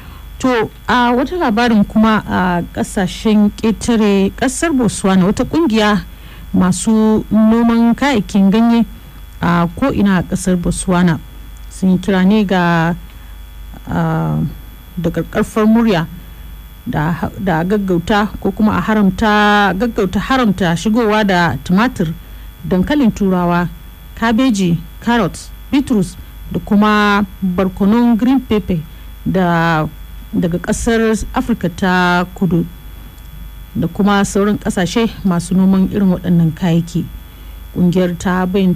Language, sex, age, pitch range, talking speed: Swahili, female, 50-69, 175-215 Hz, 105 wpm